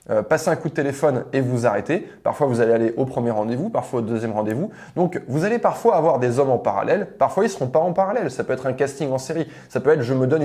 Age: 20-39